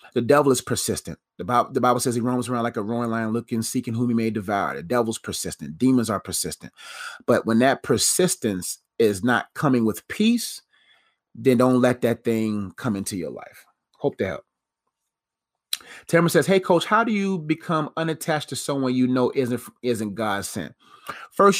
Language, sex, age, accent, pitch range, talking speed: English, male, 30-49, American, 115-140 Hz, 185 wpm